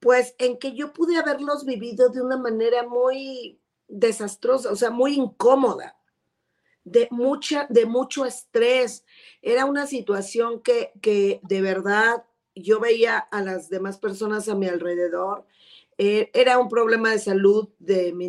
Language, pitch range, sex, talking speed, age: Spanish, 200-260 Hz, female, 145 wpm, 40-59